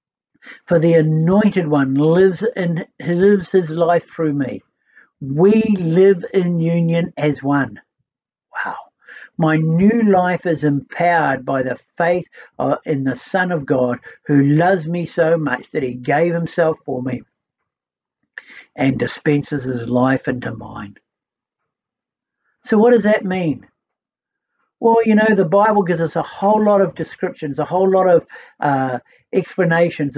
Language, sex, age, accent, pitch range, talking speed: English, male, 60-79, Australian, 145-185 Hz, 140 wpm